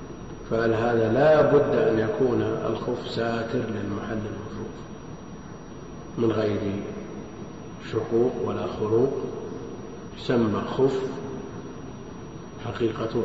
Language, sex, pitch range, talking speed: Arabic, male, 110-130 Hz, 80 wpm